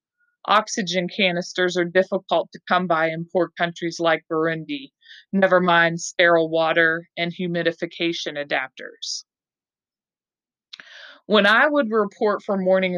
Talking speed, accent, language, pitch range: 115 wpm, American, English, 170-205 Hz